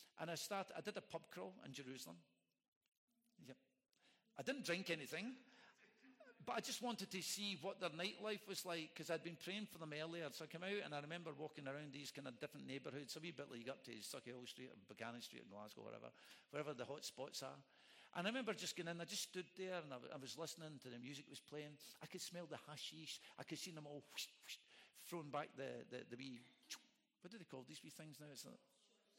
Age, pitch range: 50-69, 150-220 Hz